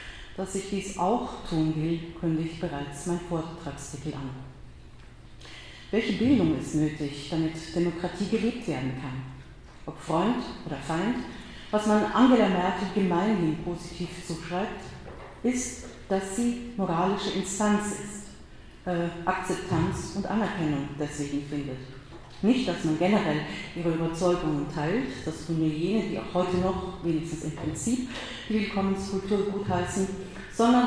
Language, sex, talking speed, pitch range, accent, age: German, female, 125 wpm, 160-200 Hz, German, 40-59